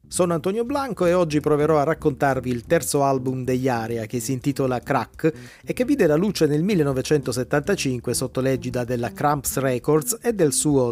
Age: 30-49